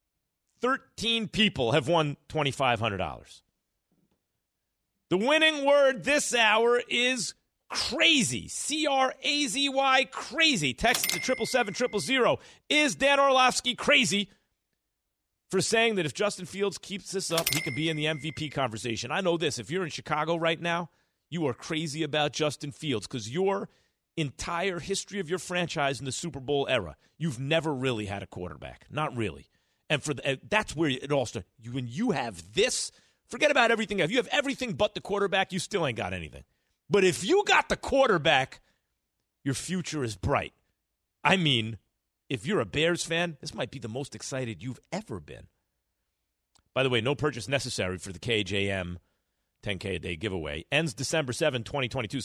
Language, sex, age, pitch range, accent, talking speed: English, male, 40-59, 125-200 Hz, American, 175 wpm